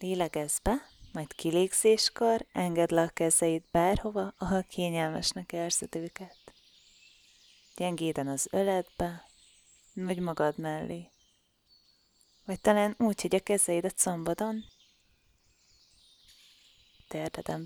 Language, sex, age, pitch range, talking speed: Hungarian, female, 20-39, 140-195 Hz, 90 wpm